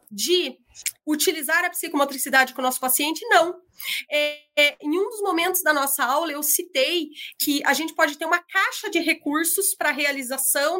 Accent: Brazilian